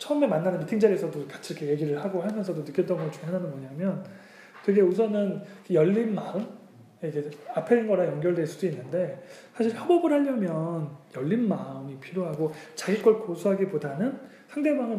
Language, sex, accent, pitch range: Korean, male, native, 165-215 Hz